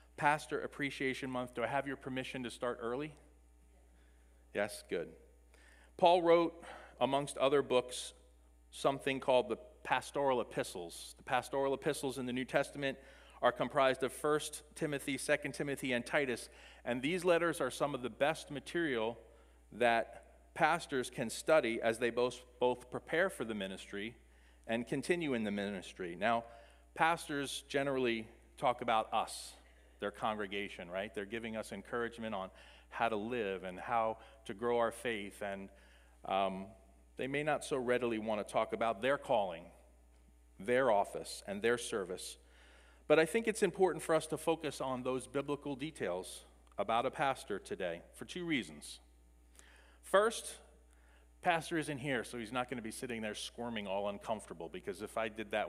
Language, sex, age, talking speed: English, male, 40-59, 155 wpm